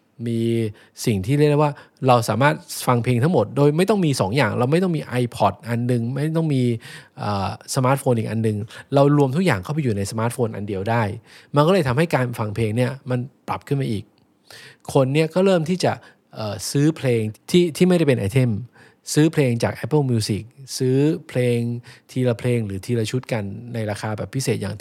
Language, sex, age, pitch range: English, male, 20-39, 110-140 Hz